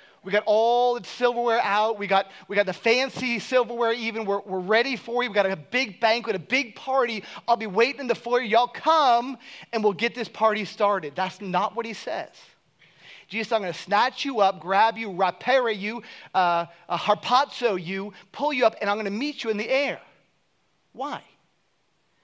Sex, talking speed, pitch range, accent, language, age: male, 200 wpm, 190-245 Hz, American, English, 30-49